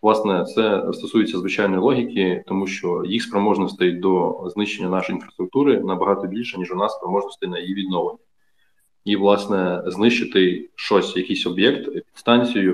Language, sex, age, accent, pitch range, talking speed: Russian, male, 20-39, native, 95-105 Hz, 140 wpm